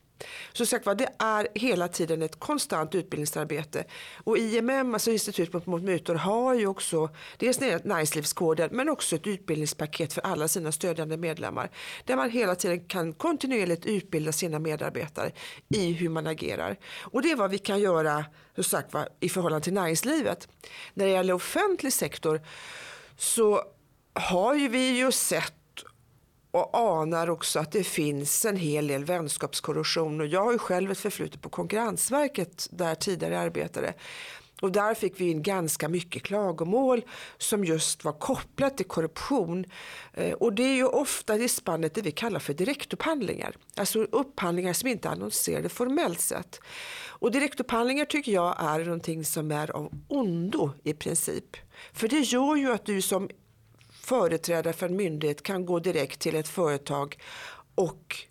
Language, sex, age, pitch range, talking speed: Swedish, female, 40-59, 160-240 Hz, 155 wpm